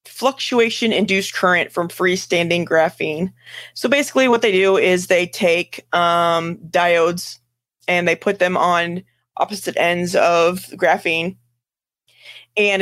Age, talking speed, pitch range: 20-39, 120 wpm, 170-195 Hz